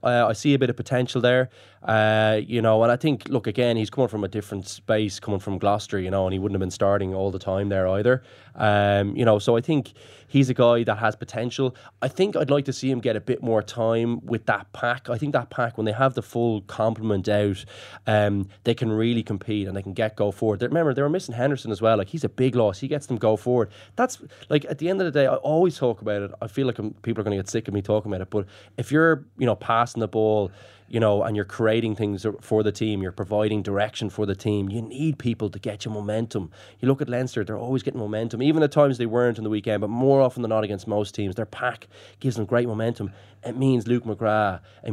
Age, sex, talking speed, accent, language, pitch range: 10-29, male, 265 wpm, Irish, English, 105-125 Hz